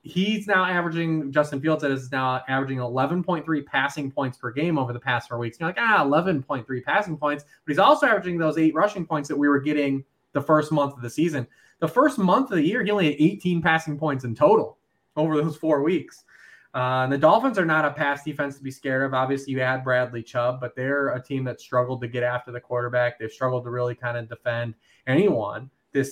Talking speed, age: 225 wpm, 20-39